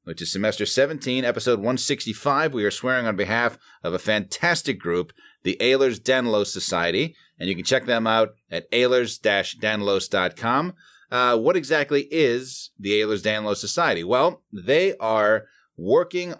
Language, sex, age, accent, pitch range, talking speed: English, male, 30-49, American, 100-135 Hz, 150 wpm